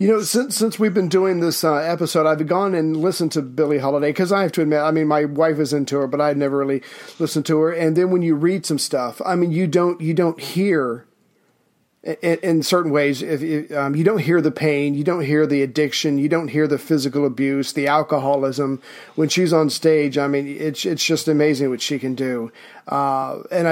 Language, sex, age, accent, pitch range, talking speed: English, male, 40-59, American, 145-165 Hz, 235 wpm